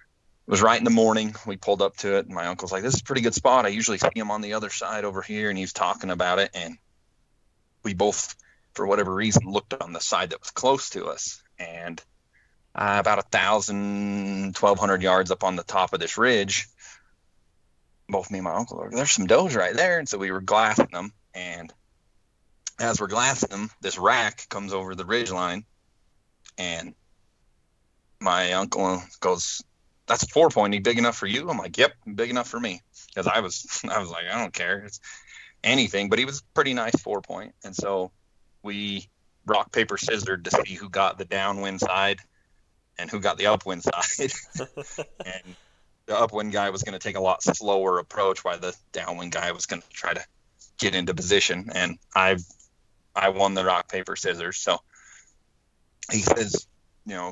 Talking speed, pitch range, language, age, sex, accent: 195 wpm, 90-105 Hz, English, 30-49, male, American